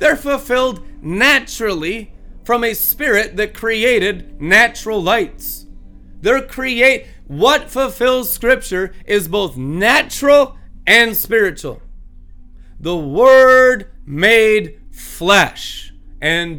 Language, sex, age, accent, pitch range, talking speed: English, male, 30-49, American, 150-225 Hz, 90 wpm